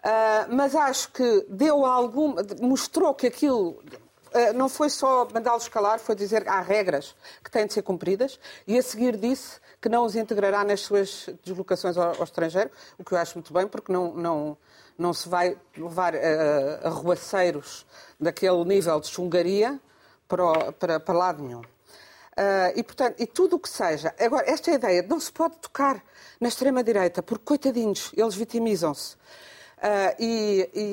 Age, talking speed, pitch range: 50-69, 175 wpm, 180-265 Hz